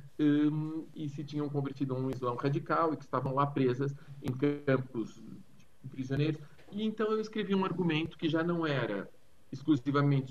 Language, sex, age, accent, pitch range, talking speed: Portuguese, male, 40-59, Brazilian, 125-155 Hz, 170 wpm